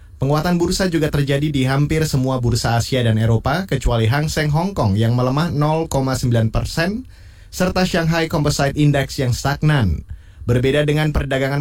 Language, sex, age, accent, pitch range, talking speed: Indonesian, male, 20-39, native, 120-150 Hz, 145 wpm